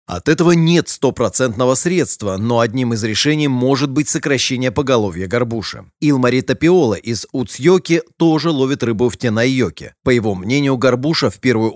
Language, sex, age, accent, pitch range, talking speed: Russian, male, 30-49, native, 115-150 Hz, 155 wpm